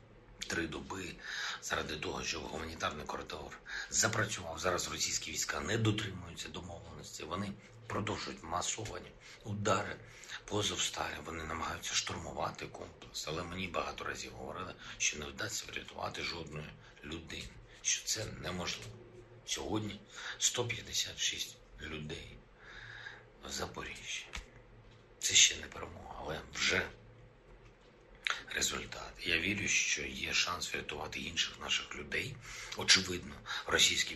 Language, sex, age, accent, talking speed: Ukrainian, male, 60-79, native, 105 wpm